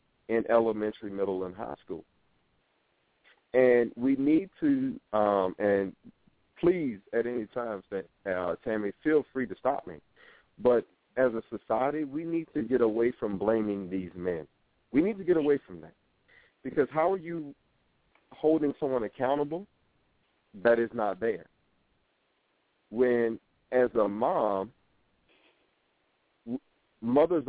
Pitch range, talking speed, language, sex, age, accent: 110-165 Hz, 130 wpm, English, male, 40-59, American